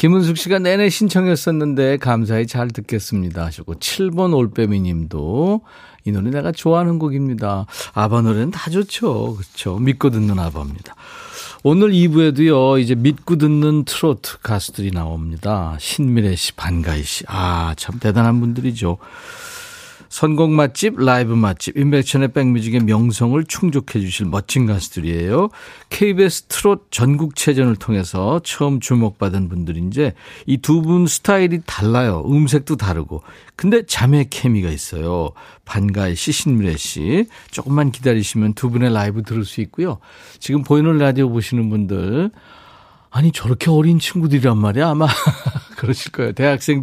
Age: 40-59